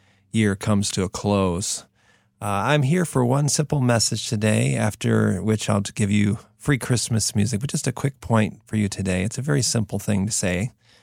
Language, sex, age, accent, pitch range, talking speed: English, male, 40-59, American, 105-140 Hz, 195 wpm